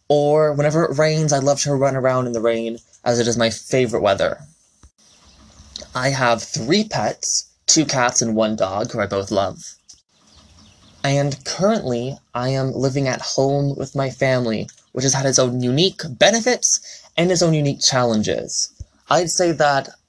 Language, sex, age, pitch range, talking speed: English, male, 20-39, 120-150 Hz, 165 wpm